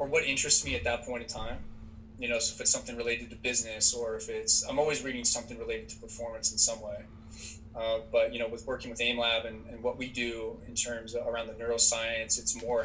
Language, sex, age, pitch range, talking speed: English, male, 20-39, 110-120 Hz, 245 wpm